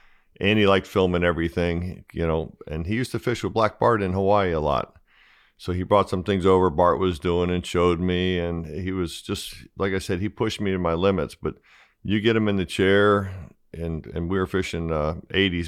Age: 40-59